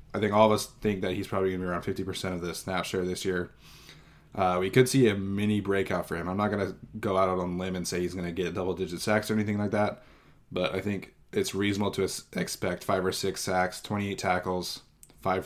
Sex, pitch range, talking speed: male, 95-105 Hz, 250 wpm